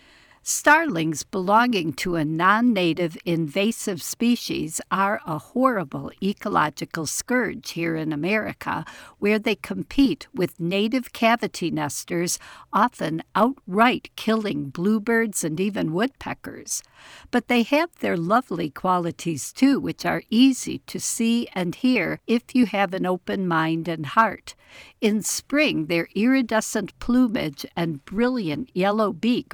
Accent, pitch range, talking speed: American, 180-240 Hz, 120 wpm